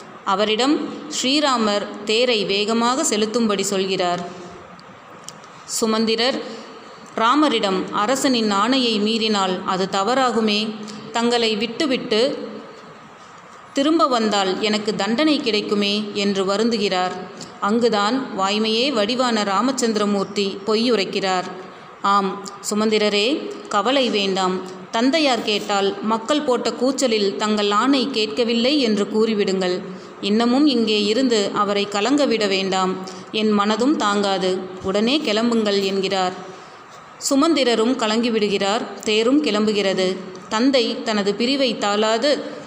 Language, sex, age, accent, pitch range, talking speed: Tamil, female, 30-49, native, 200-245 Hz, 85 wpm